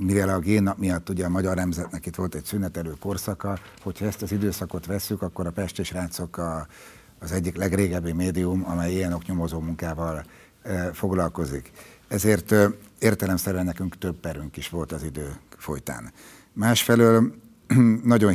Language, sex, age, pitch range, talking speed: Hungarian, male, 60-79, 85-105 Hz, 145 wpm